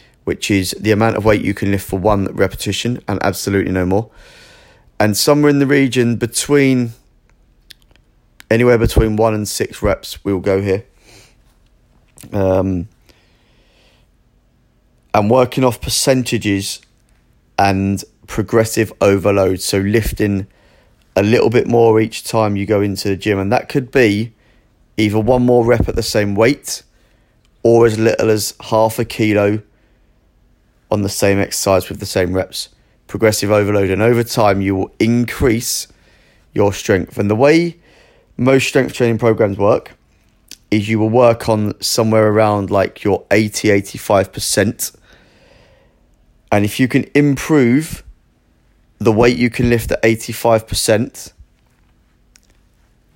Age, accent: 30-49, British